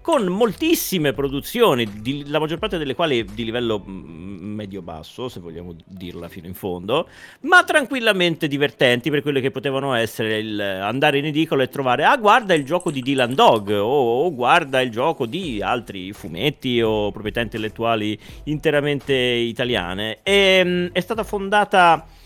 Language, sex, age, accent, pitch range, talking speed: Italian, male, 40-59, native, 105-160 Hz, 155 wpm